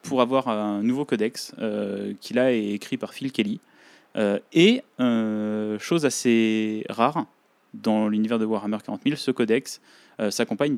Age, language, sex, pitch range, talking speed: 20-39, French, male, 105-135 Hz, 150 wpm